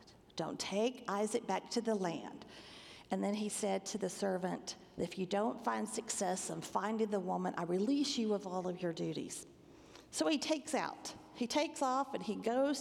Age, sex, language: 50-69, female, English